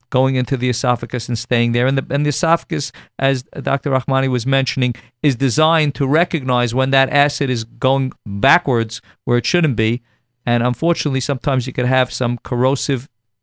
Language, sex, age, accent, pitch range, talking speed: English, male, 50-69, American, 120-135 Hz, 170 wpm